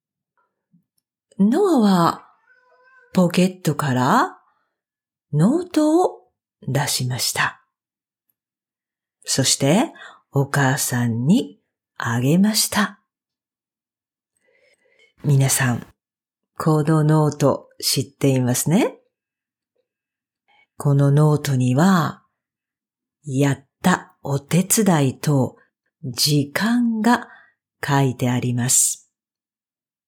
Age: 50-69